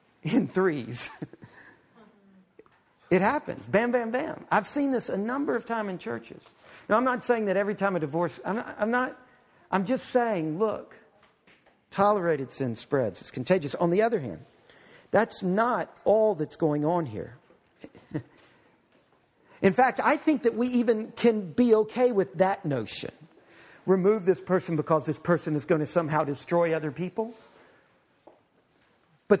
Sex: male